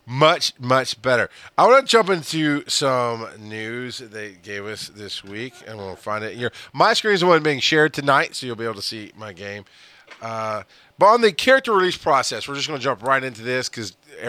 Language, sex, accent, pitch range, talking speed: English, male, American, 115-155 Hz, 220 wpm